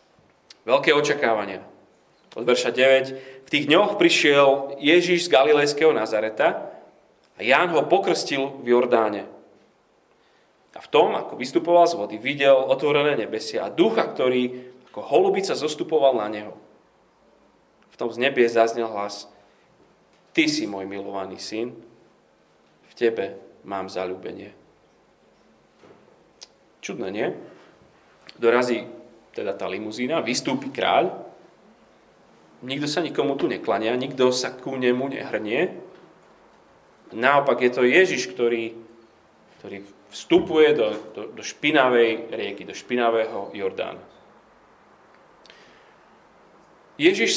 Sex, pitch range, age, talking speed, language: male, 115-155 Hz, 30-49, 110 wpm, Slovak